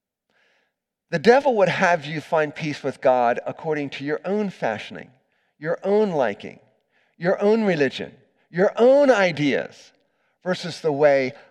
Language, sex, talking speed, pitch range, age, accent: English, male, 135 wpm, 140-215 Hz, 40-59, American